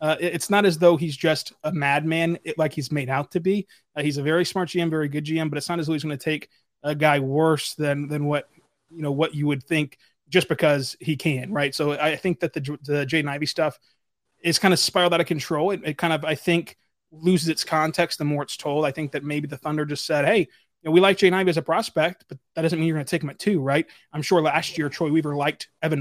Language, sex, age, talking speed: English, male, 20-39, 275 wpm